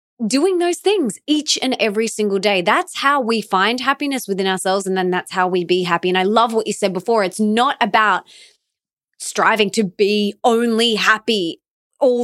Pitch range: 205-265 Hz